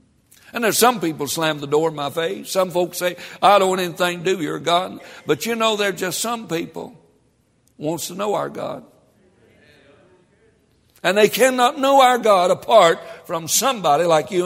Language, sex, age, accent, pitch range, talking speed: English, male, 60-79, American, 160-225 Hz, 185 wpm